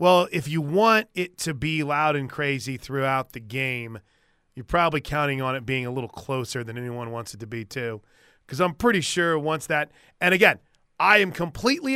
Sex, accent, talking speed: male, American, 200 wpm